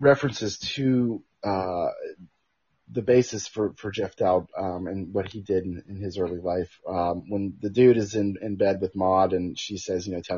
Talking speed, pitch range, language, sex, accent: 200 wpm, 95-110 Hz, English, male, American